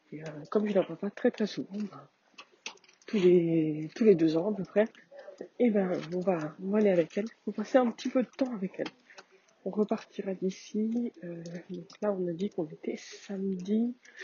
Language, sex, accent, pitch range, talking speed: French, female, French, 180-225 Hz, 215 wpm